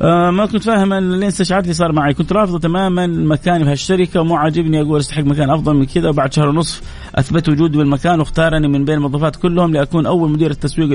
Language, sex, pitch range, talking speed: Arabic, male, 120-160 Hz, 190 wpm